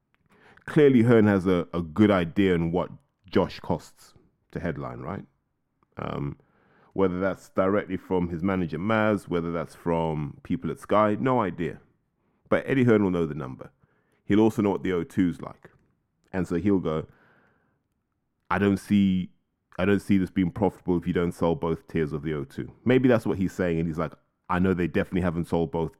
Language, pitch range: English, 85-105 Hz